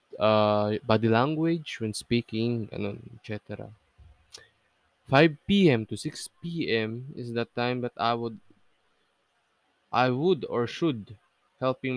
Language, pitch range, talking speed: Filipino, 110-135 Hz, 120 wpm